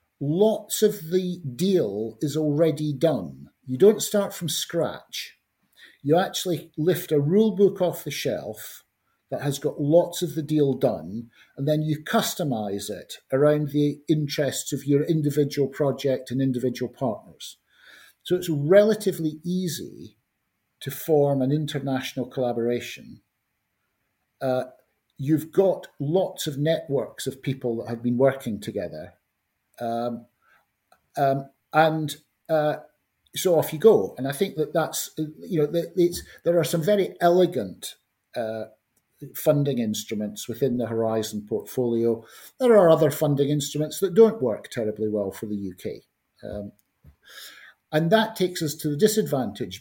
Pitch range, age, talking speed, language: 125-170 Hz, 50-69, 140 wpm, English